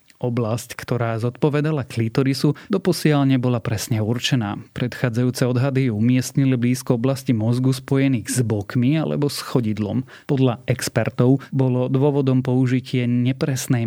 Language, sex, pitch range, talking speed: Slovak, male, 120-135 Hz, 110 wpm